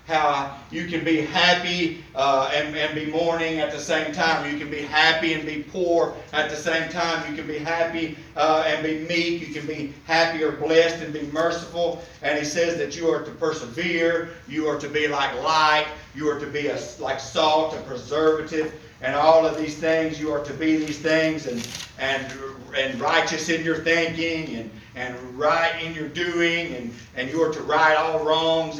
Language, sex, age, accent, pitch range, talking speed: English, male, 50-69, American, 150-165 Hz, 200 wpm